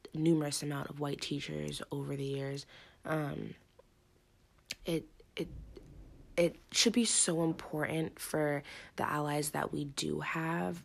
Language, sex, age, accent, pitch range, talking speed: English, female, 20-39, American, 140-170 Hz, 125 wpm